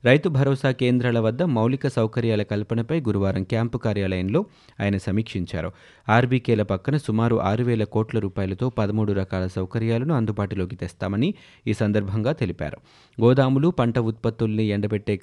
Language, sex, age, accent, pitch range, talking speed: Telugu, male, 30-49, native, 100-125 Hz, 120 wpm